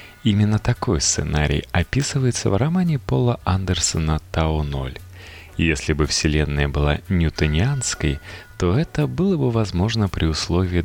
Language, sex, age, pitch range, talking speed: Russian, male, 30-49, 75-120 Hz, 115 wpm